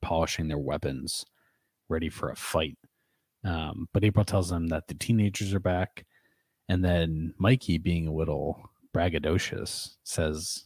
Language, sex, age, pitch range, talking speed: English, male, 30-49, 80-100 Hz, 140 wpm